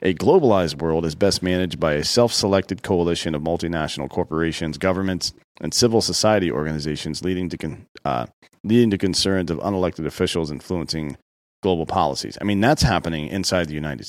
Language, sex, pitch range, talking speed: English, male, 75-100 Hz, 160 wpm